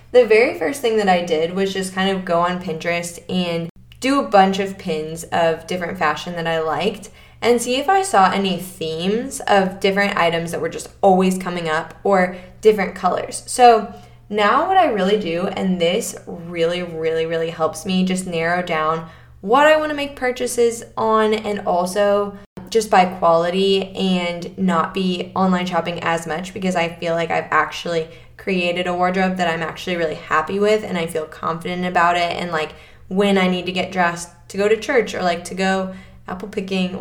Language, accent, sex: English, American, female